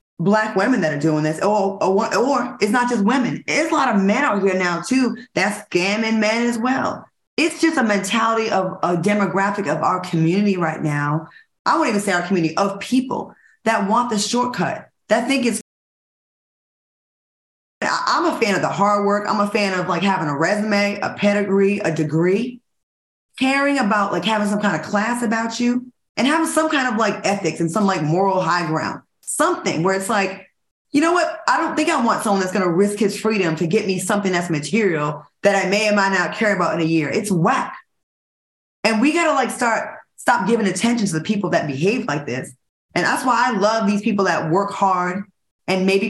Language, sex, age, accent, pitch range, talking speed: English, female, 20-39, American, 185-225 Hz, 210 wpm